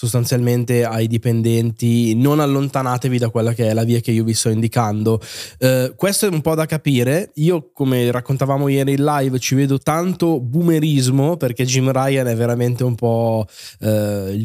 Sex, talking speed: male, 165 wpm